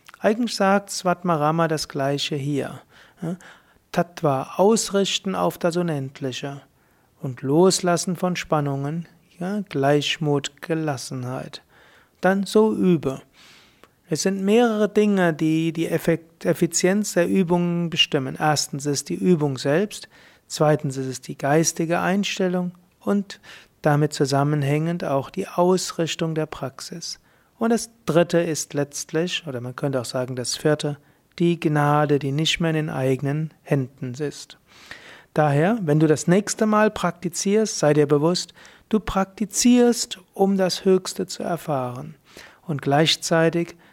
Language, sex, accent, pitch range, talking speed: German, male, German, 145-180 Hz, 125 wpm